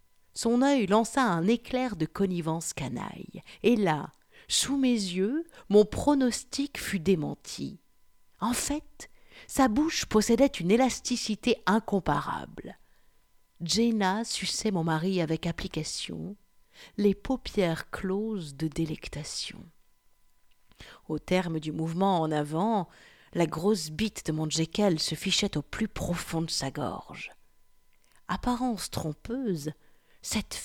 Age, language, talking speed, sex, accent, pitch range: 50-69, French, 115 wpm, female, French, 160-220 Hz